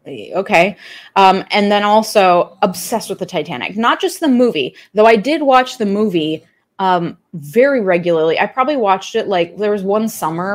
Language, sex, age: English, female, 20-39